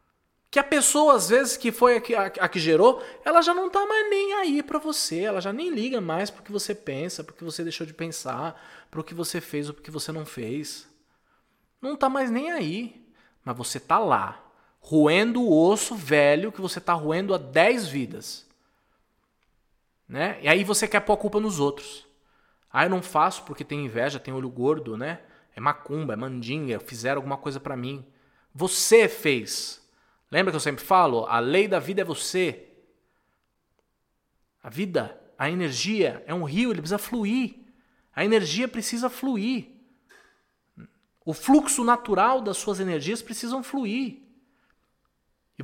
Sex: male